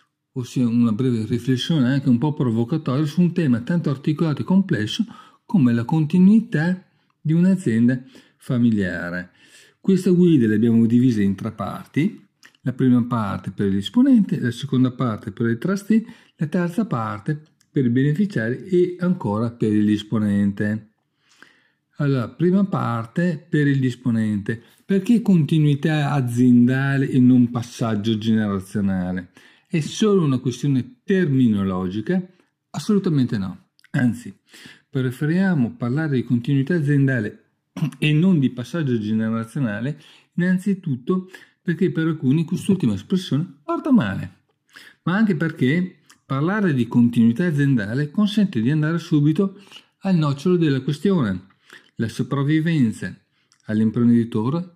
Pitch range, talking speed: 120-175 Hz, 120 wpm